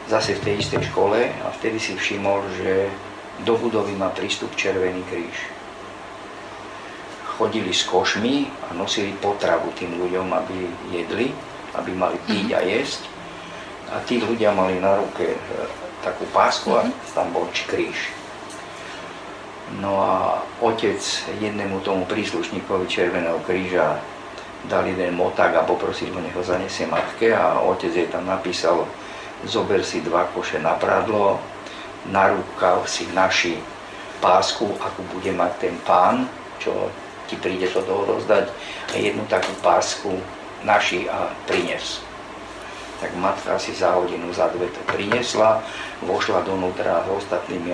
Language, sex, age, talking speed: Slovak, male, 50-69, 135 wpm